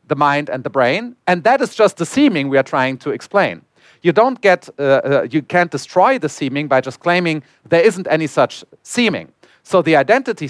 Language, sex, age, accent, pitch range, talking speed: English, male, 40-59, German, 145-190 Hz, 210 wpm